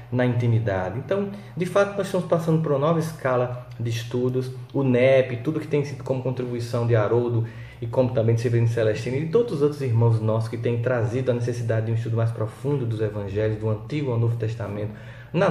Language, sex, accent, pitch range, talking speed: Portuguese, male, Brazilian, 115-140 Hz, 215 wpm